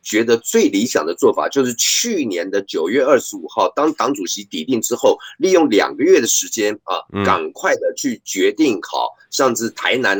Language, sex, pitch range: Chinese, male, 280-415 Hz